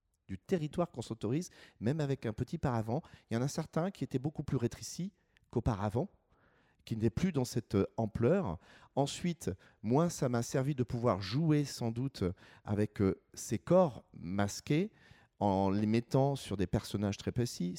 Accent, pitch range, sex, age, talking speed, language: French, 100-135 Hz, male, 40-59, 160 wpm, French